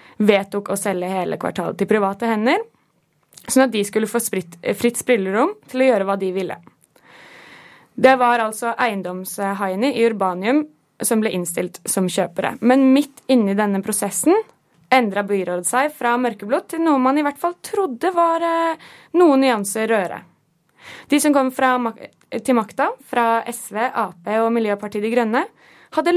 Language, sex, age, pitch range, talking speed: English, female, 20-39, 205-275 Hz, 160 wpm